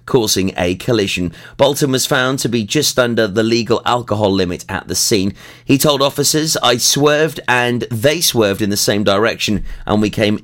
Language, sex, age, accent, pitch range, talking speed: English, male, 30-49, British, 105-135 Hz, 185 wpm